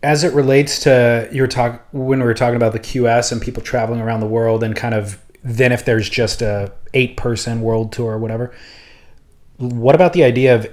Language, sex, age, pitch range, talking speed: English, male, 30-49, 110-135 Hz, 215 wpm